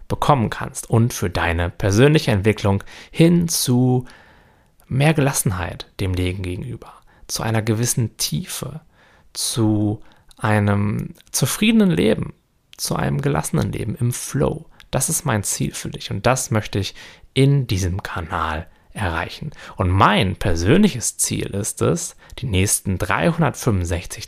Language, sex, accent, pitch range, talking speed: German, male, German, 95-130 Hz, 125 wpm